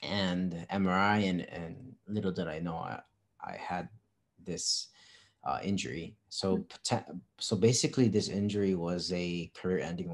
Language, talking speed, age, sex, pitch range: English, 130 wpm, 30-49, male, 90-110 Hz